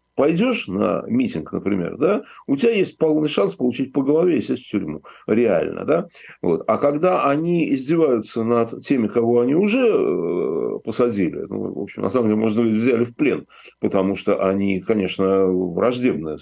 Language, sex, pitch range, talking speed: Russian, male, 100-150 Hz, 160 wpm